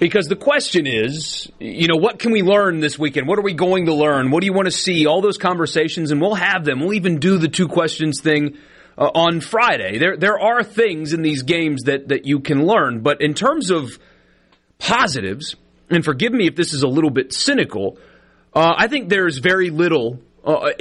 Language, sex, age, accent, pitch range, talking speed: English, male, 30-49, American, 130-180 Hz, 215 wpm